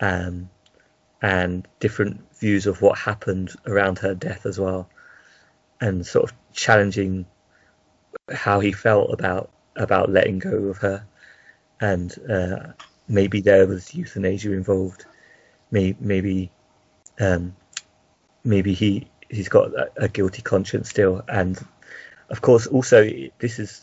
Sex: male